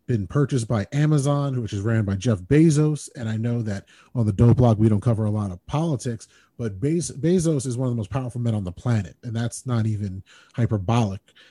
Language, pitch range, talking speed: English, 115-145 Hz, 225 wpm